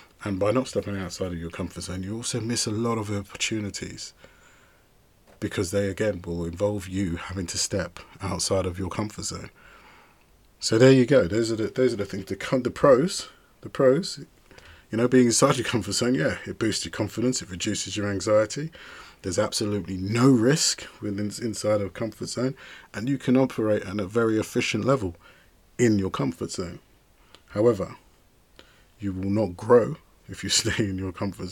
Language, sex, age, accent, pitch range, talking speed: English, male, 30-49, British, 95-115 Hz, 185 wpm